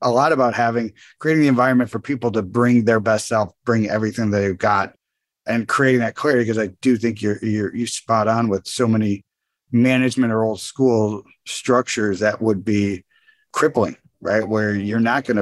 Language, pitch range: English, 100-125 Hz